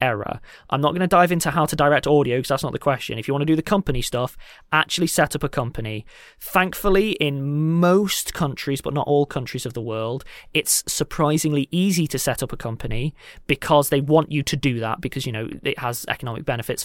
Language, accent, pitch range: English, British, 130-160 Hz